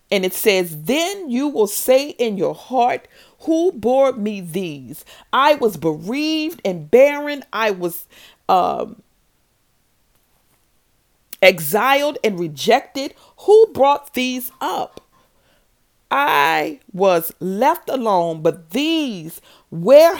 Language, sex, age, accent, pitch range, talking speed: English, female, 40-59, American, 190-270 Hz, 105 wpm